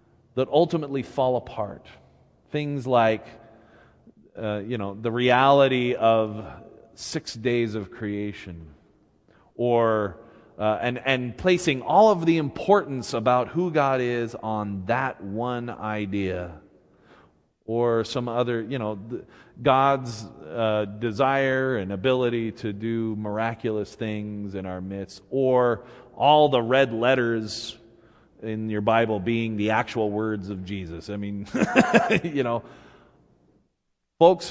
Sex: male